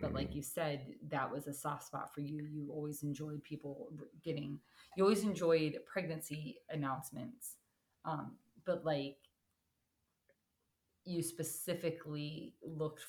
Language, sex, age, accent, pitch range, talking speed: English, female, 30-49, American, 140-165 Hz, 125 wpm